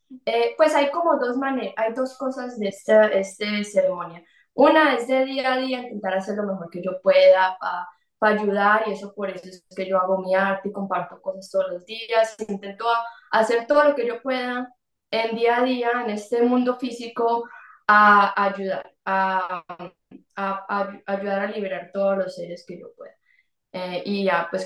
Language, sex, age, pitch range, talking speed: Spanish, female, 20-39, 195-240 Hz, 195 wpm